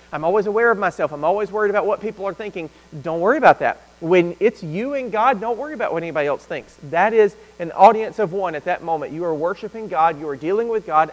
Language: English